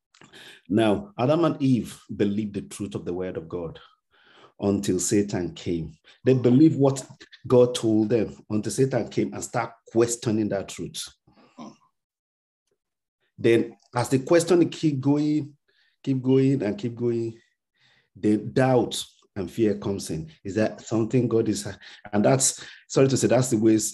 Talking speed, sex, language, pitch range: 150 wpm, male, English, 105-135 Hz